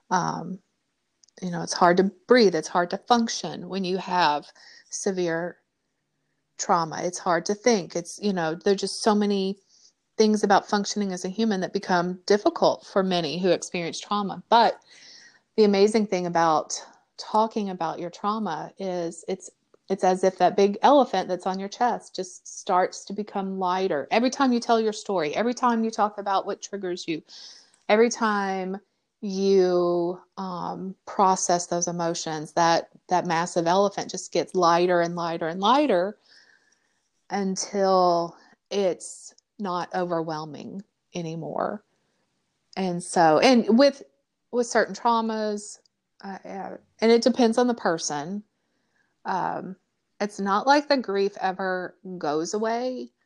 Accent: American